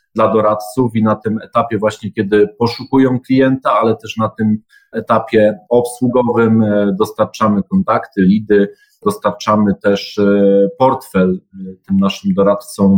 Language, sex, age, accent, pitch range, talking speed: Polish, male, 40-59, native, 100-120 Hz, 115 wpm